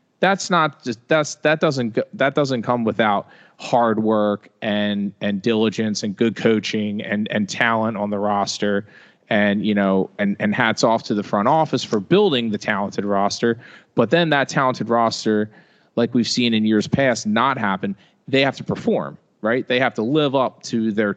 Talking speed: 185 wpm